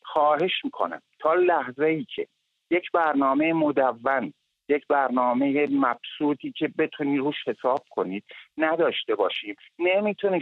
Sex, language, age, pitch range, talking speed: male, English, 50-69, 145-210 Hz, 110 wpm